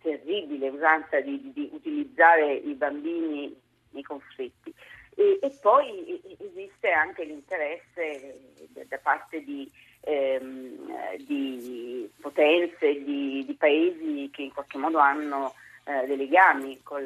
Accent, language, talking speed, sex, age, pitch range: native, Italian, 115 wpm, female, 40-59, 140-165 Hz